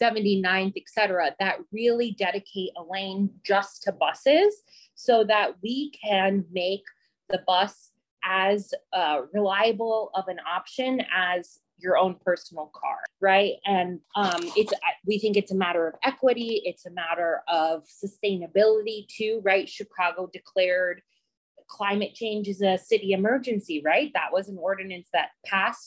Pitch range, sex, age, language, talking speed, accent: 185-220 Hz, female, 20-39, English, 145 wpm, American